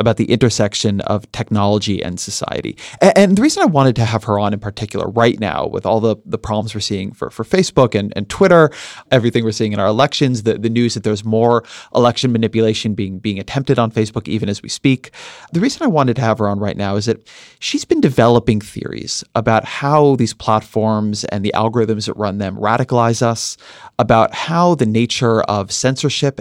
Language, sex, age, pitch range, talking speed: English, male, 30-49, 105-140 Hz, 205 wpm